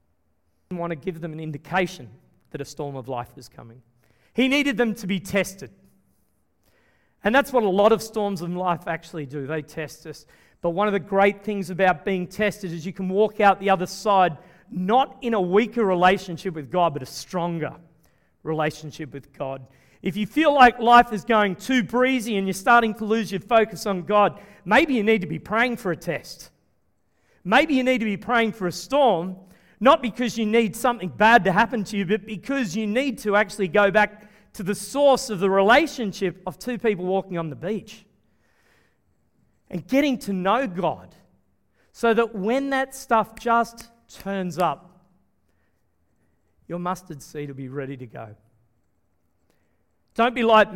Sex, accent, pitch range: male, Australian, 155-220 Hz